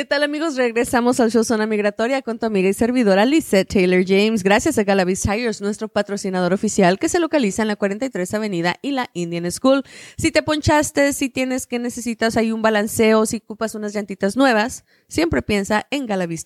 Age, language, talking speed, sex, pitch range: 20-39, Spanish, 195 wpm, female, 190-240 Hz